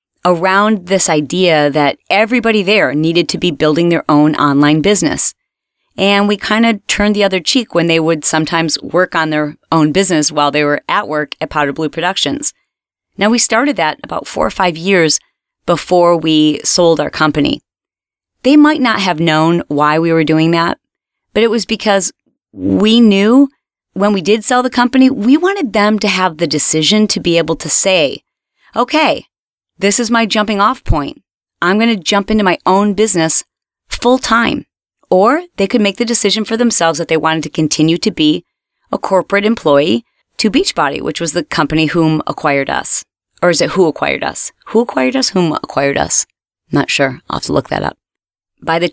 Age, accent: 30-49, American